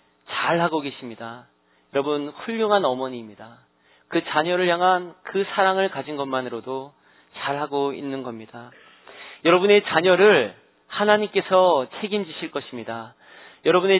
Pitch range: 135-195 Hz